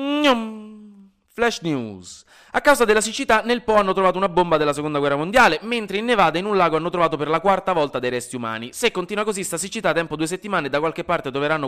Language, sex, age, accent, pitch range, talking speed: Italian, male, 20-39, native, 130-205 Hz, 215 wpm